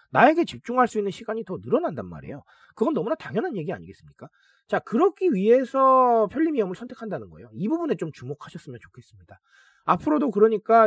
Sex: male